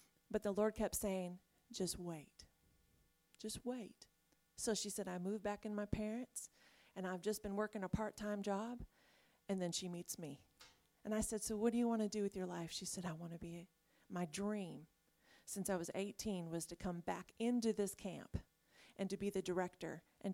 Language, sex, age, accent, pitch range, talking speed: English, female, 40-59, American, 180-215 Hz, 205 wpm